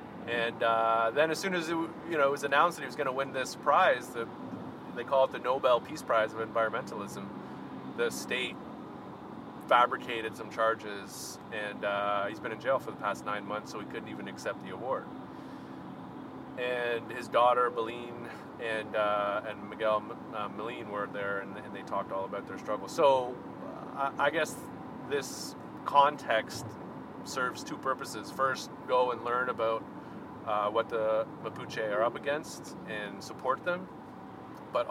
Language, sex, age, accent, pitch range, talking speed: English, male, 30-49, American, 110-135 Hz, 170 wpm